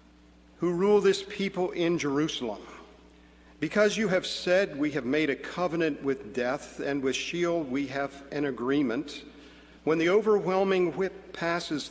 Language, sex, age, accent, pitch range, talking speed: English, male, 50-69, American, 120-170 Hz, 145 wpm